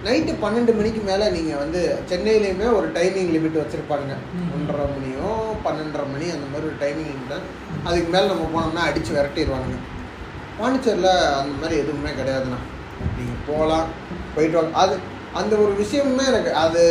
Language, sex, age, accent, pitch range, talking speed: Tamil, male, 20-39, native, 160-210 Hz, 145 wpm